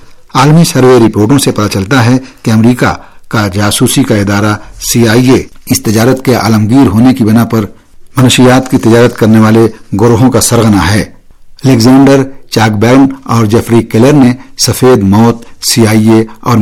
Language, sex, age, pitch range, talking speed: Urdu, male, 60-79, 105-125 Hz, 165 wpm